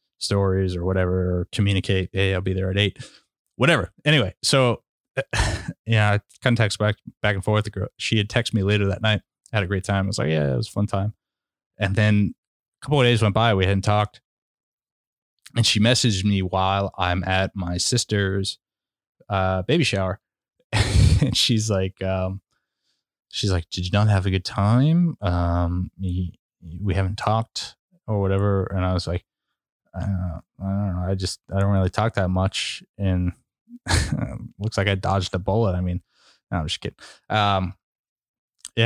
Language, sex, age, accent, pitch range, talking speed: English, male, 20-39, American, 95-110 Hz, 175 wpm